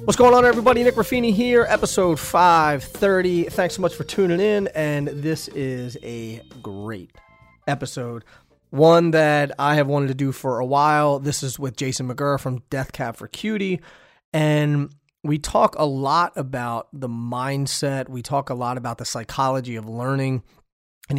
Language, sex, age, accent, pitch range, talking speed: English, male, 30-49, American, 125-155 Hz, 165 wpm